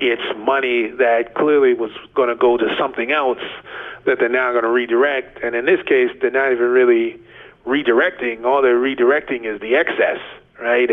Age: 30-49